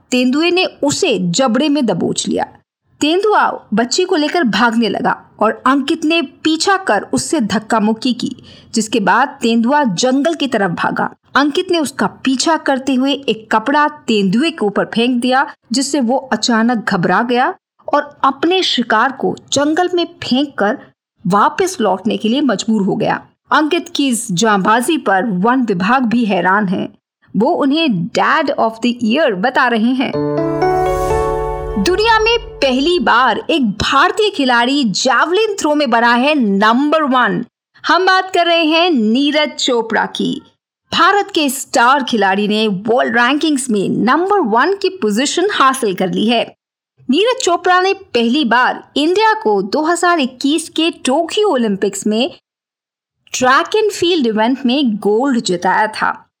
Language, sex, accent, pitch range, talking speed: Hindi, female, native, 220-320 Hz, 145 wpm